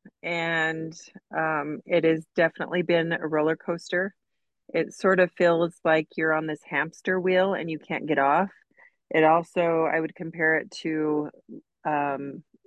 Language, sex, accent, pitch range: English, female, American, 155-180 Hz